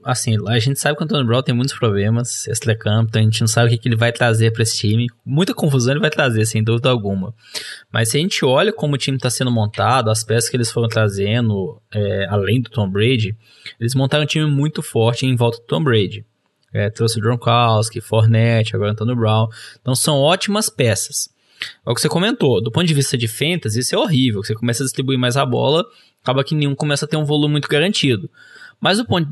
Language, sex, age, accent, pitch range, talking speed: Portuguese, male, 10-29, Brazilian, 115-145 Hz, 235 wpm